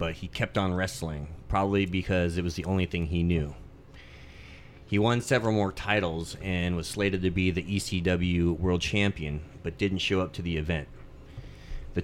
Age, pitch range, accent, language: 30-49, 85-95 Hz, American, English